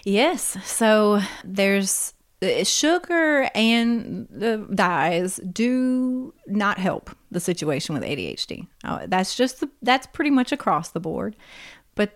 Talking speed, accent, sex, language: 135 wpm, American, female, English